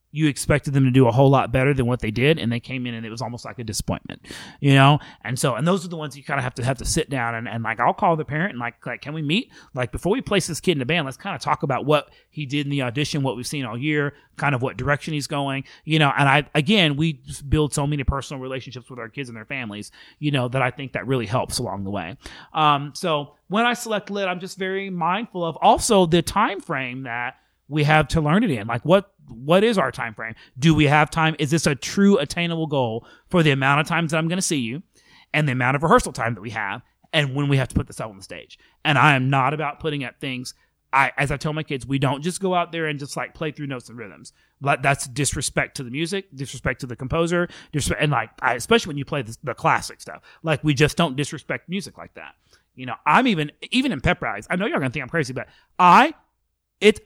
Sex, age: male, 30-49